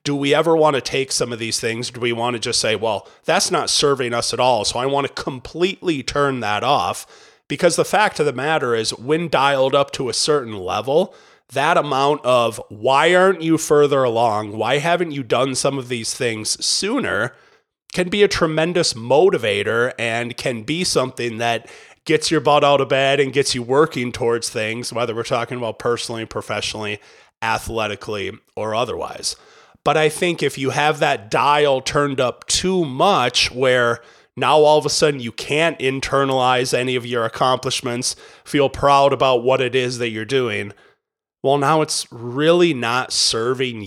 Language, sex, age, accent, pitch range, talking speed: English, male, 30-49, American, 120-150 Hz, 180 wpm